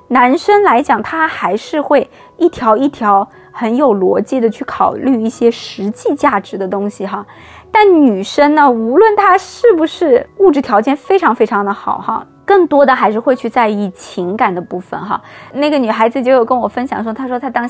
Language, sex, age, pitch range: Chinese, female, 20-39, 220-290 Hz